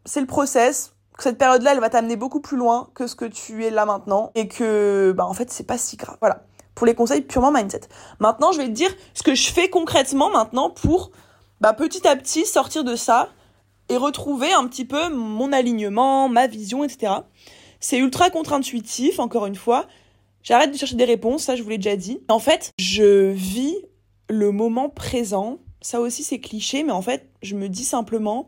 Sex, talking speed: female, 205 wpm